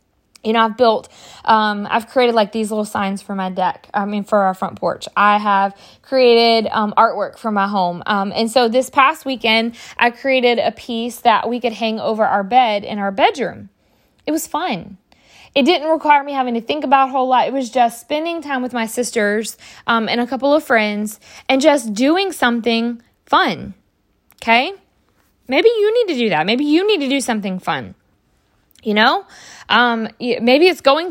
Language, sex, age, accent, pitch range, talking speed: English, female, 20-39, American, 215-270 Hz, 195 wpm